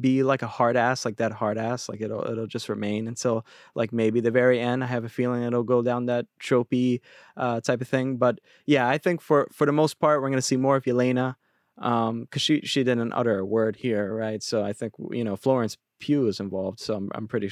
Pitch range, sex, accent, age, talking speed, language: 110-130 Hz, male, American, 20-39, 245 wpm, English